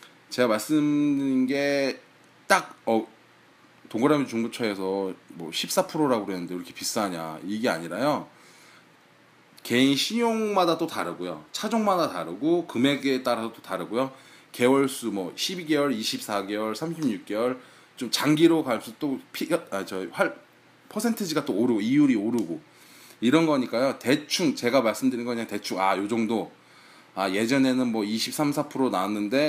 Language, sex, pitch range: Korean, male, 105-150 Hz